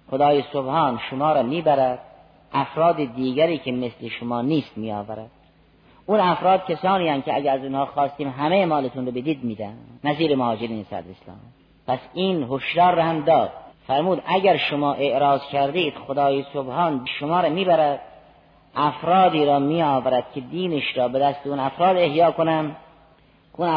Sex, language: female, Persian